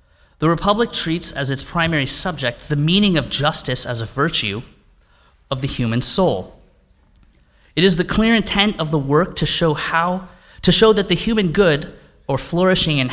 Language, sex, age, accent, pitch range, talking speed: English, male, 30-49, American, 120-175 Hz, 175 wpm